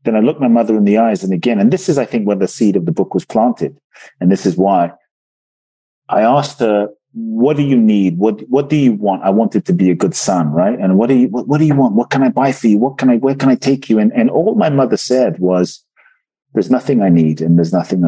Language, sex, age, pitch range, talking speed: English, male, 40-59, 100-150 Hz, 280 wpm